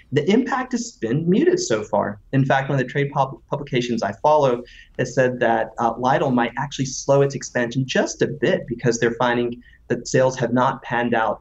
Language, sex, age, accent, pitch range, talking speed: English, male, 30-49, American, 120-145 Hz, 205 wpm